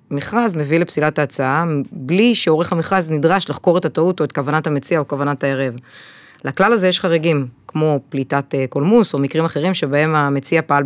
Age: 30-49